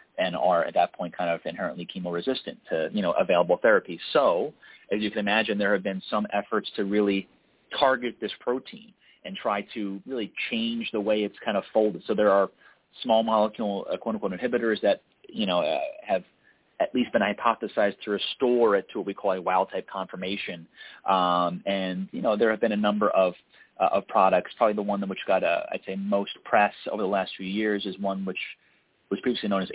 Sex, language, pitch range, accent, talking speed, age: male, English, 100-120 Hz, American, 205 wpm, 30-49